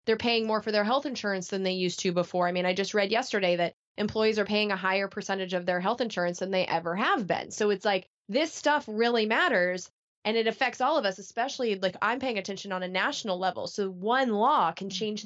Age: 20-39